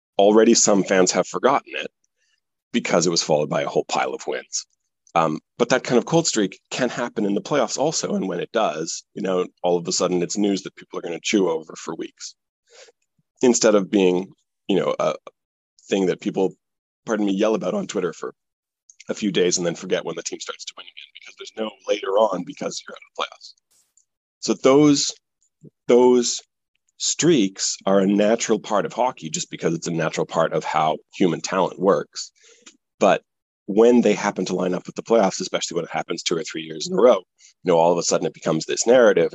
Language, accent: English, American